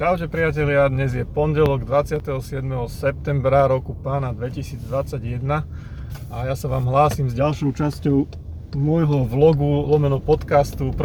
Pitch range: 125-145 Hz